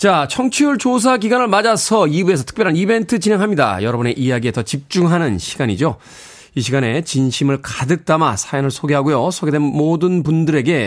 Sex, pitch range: male, 135-205 Hz